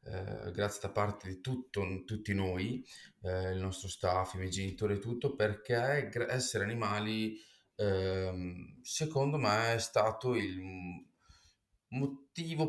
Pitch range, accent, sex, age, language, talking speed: 95-125 Hz, native, male, 20-39, Italian, 130 wpm